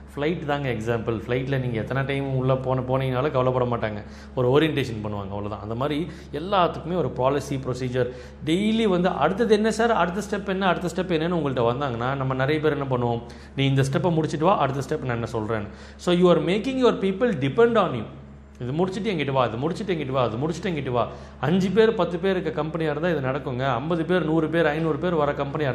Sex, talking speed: male, 200 wpm